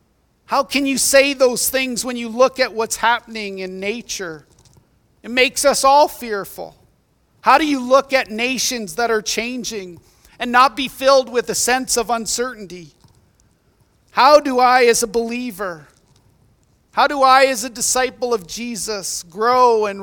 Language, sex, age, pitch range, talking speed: English, male, 40-59, 205-255 Hz, 160 wpm